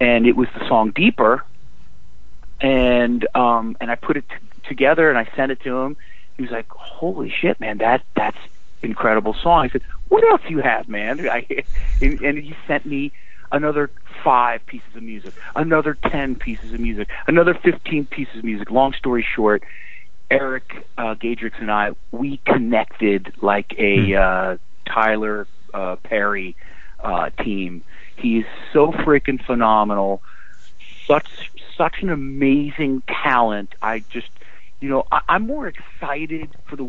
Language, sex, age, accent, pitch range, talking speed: English, male, 40-59, American, 110-140 Hz, 155 wpm